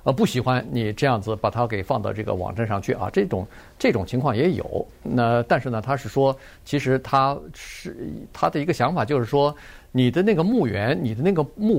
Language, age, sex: Chinese, 50-69, male